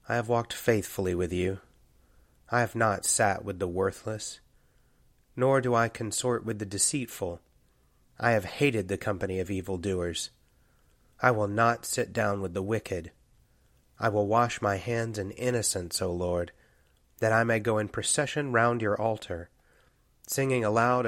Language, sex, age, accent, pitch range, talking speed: English, male, 30-49, American, 95-115 Hz, 160 wpm